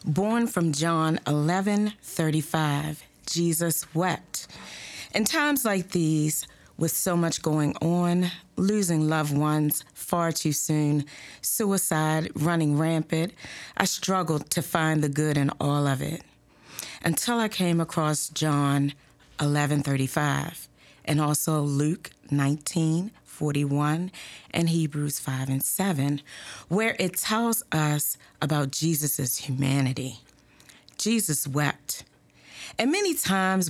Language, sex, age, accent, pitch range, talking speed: English, female, 40-59, American, 145-175 Hz, 110 wpm